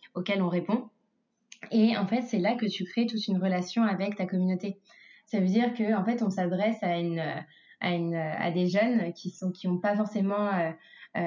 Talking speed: 200 wpm